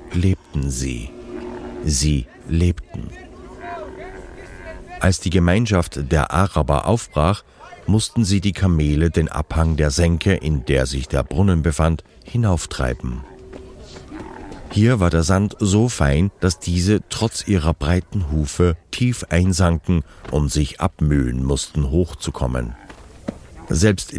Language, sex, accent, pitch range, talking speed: German, male, German, 75-95 Hz, 110 wpm